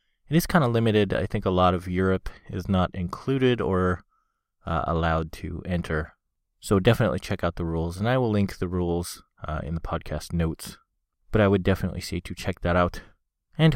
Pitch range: 85-100 Hz